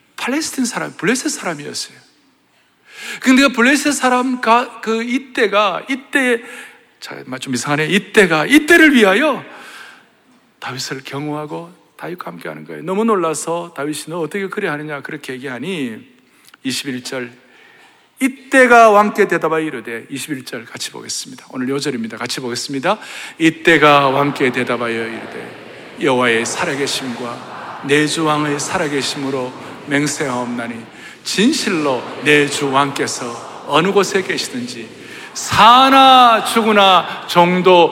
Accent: native